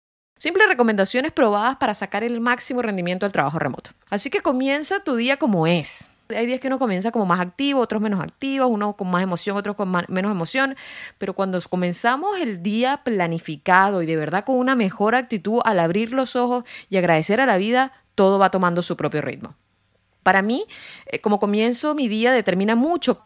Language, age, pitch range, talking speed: Spanish, 20-39, 185-260 Hz, 190 wpm